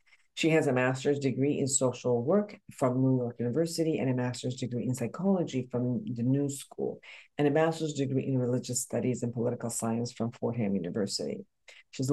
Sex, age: female, 50-69